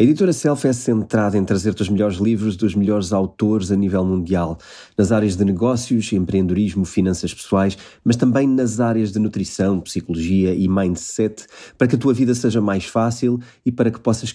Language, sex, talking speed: Portuguese, male, 185 wpm